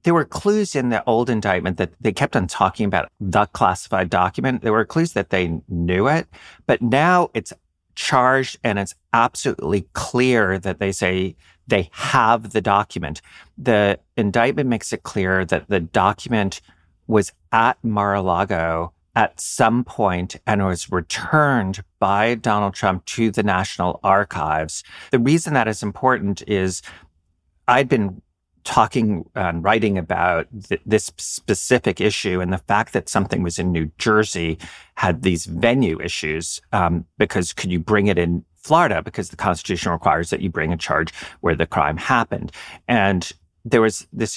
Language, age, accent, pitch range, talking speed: English, 40-59, American, 90-115 Hz, 155 wpm